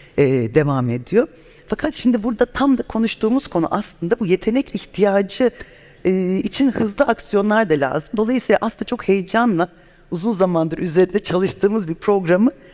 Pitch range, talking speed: 165-220 Hz, 130 wpm